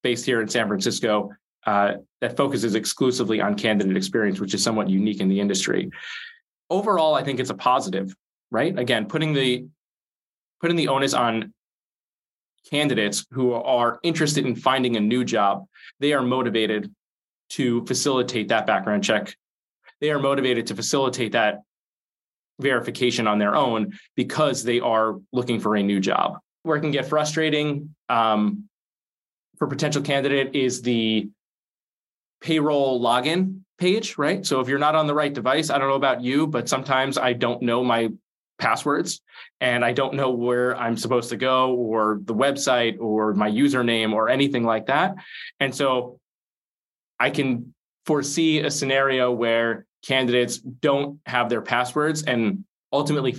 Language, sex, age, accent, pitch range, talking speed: English, male, 20-39, American, 115-140 Hz, 155 wpm